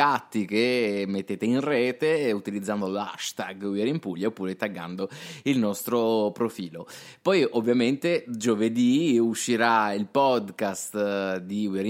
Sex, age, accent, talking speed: male, 20-39, native, 110 wpm